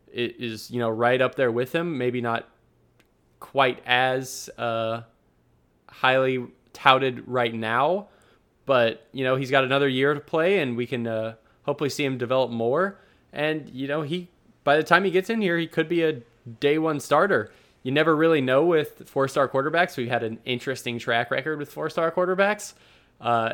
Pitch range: 115-140 Hz